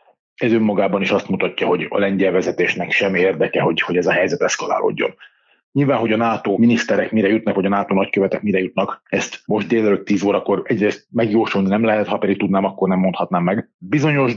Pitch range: 95-110 Hz